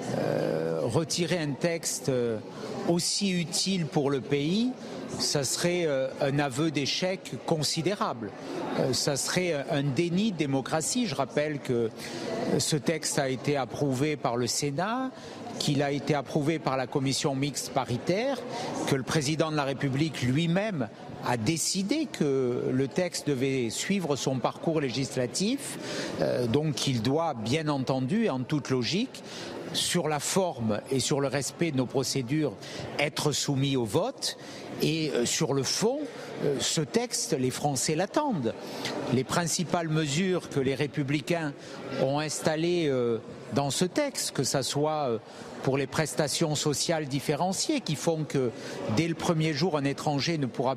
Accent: French